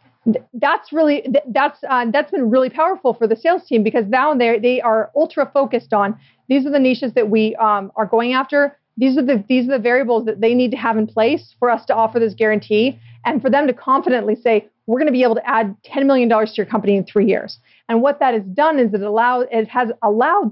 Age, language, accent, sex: 40-59, English, American, female